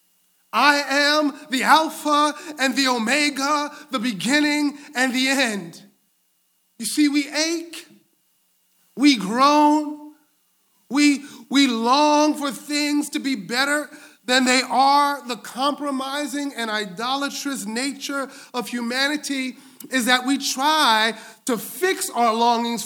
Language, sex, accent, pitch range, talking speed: English, male, American, 240-285 Hz, 115 wpm